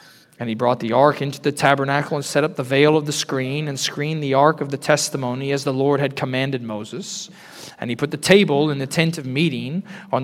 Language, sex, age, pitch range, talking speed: English, male, 40-59, 140-175 Hz, 235 wpm